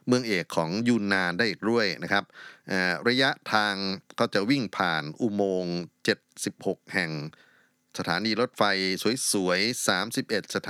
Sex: male